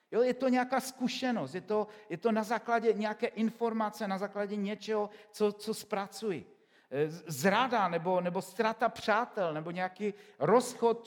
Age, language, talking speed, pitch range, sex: 50-69, Czech, 145 wpm, 185-225 Hz, male